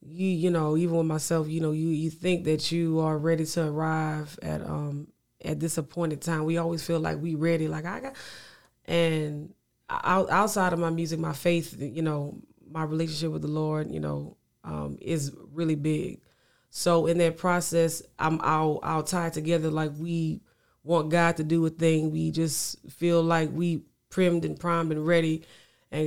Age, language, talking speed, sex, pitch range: 20-39, English, 185 wpm, female, 155-170 Hz